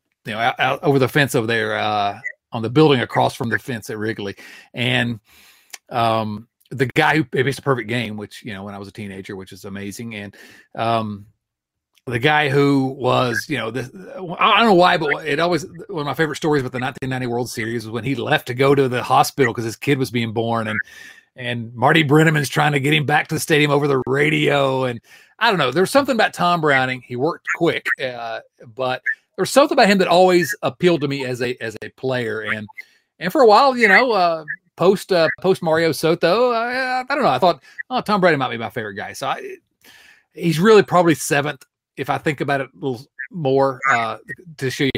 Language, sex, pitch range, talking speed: English, male, 120-165 Hz, 225 wpm